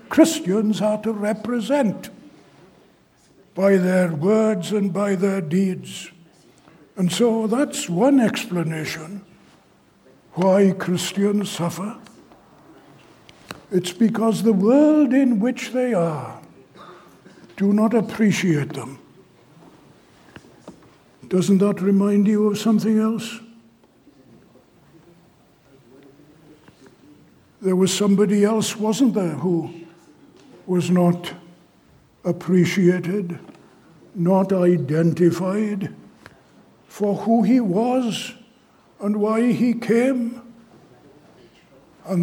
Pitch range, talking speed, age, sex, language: 170-215 Hz, 85 wpm, 60-79, male, English